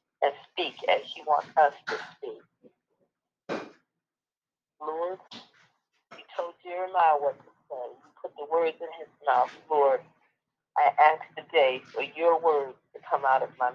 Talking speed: 150 wpm